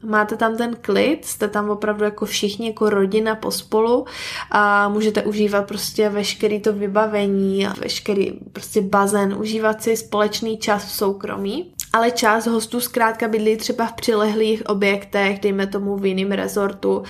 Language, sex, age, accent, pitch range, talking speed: Czech, female, 20-39, native, 195-210 Hz, 145 wpm